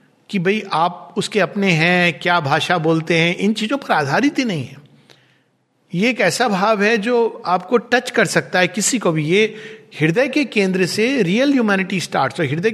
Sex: male